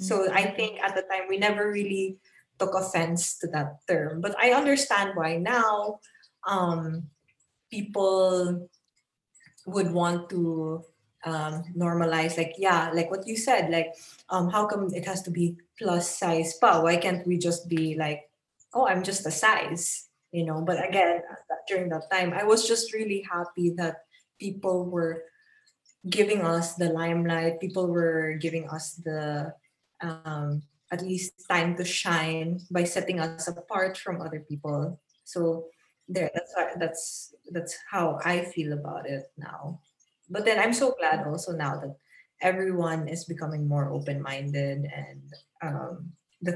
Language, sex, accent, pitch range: Filipino, female, native, 160-190 Hz